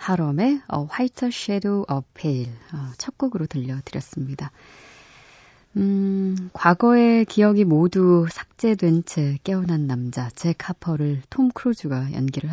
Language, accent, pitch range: Korean, native, 145-195 Hz